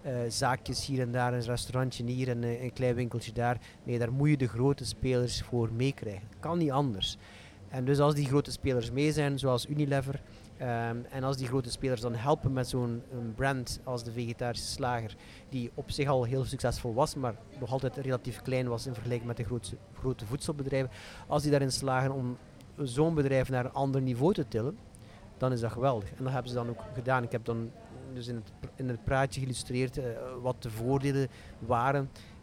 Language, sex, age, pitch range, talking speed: Dutch, male, 30-49, 120-135 Hz, 200 wpm